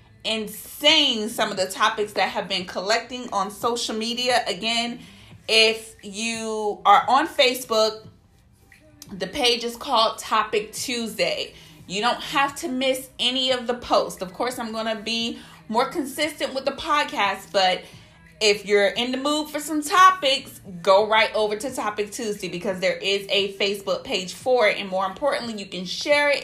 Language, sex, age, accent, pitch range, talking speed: English, female, 30-49, American, 195-270 Hz, 170 wpm